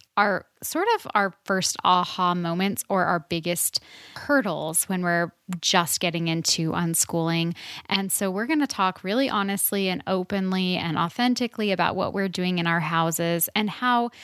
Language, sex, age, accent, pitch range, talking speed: English, female, 10-29, American, 175-215 Hz, 160 wpm